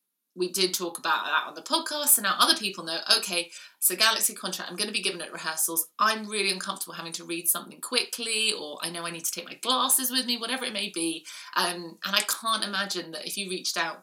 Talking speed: 245 wpm